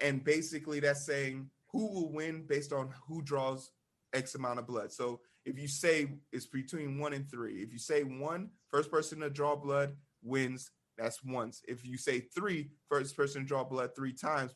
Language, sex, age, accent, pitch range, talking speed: English, male, 30-49, American, 125-150 Hz, 195 wpm